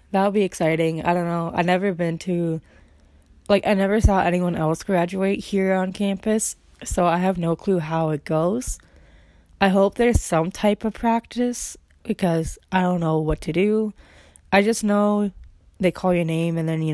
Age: 20-39